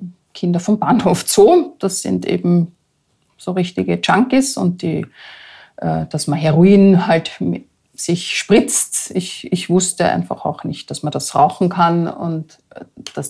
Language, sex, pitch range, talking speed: German, female, 150-185 Hz, 140 wpm